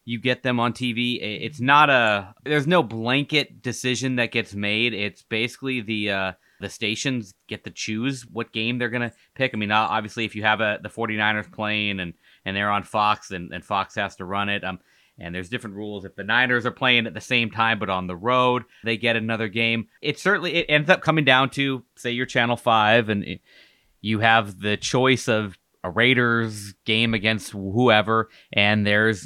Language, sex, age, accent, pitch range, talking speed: English, male, 30-49, American, 100-125 Hz, 205 wpm